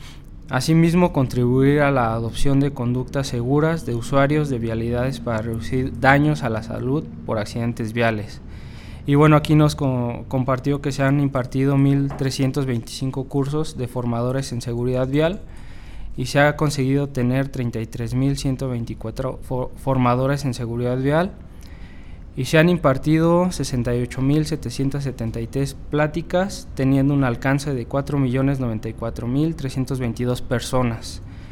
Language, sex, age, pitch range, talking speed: Spanish, male, 20-39, 120-140 Hz, 110 wpm